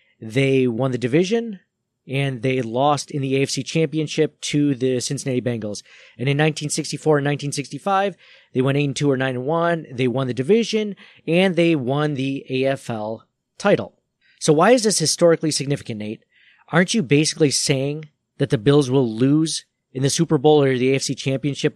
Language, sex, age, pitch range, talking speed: English, male, 40-59, 130-155 Hz, 175 wpm